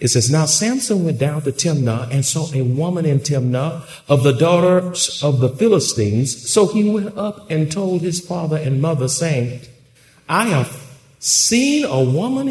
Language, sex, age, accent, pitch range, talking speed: English, male, 50-69, American, 125-180 Hz, 175 wpm